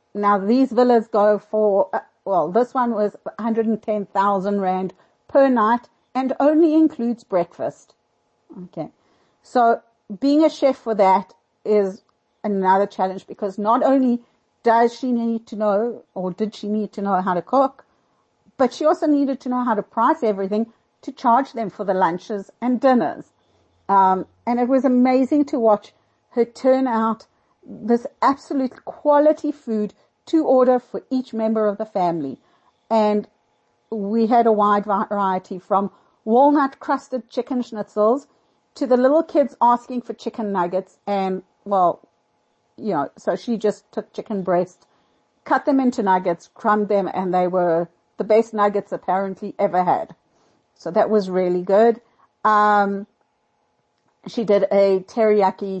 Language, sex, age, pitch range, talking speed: English, female, 60-79, 200-250 Hz, 150 wpm